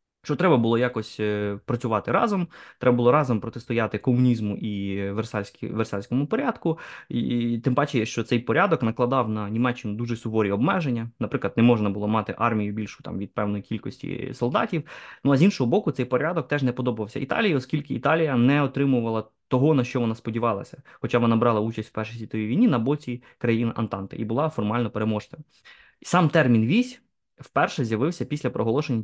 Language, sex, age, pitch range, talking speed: Ukrainian, male, 20-39, 110-145 Hz, 165 wpm